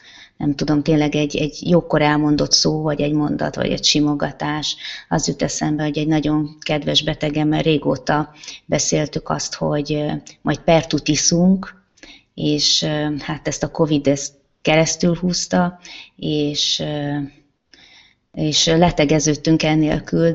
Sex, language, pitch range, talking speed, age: female, Hungarian, 145-175 Hz, 120 wpm, 20-39